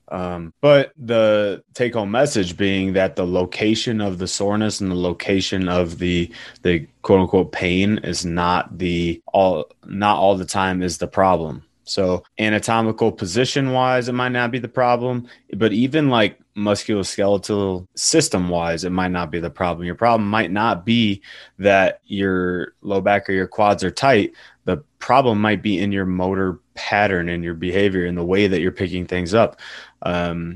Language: English